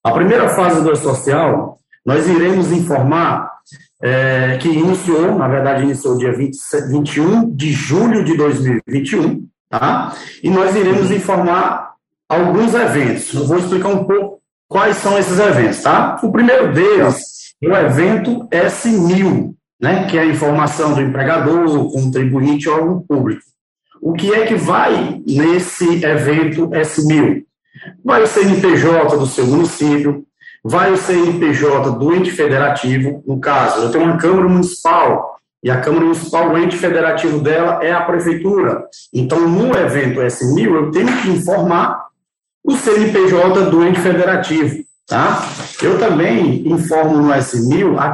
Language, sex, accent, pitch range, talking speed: English, male, Brazilian, 145-190 Hz, 140 wpm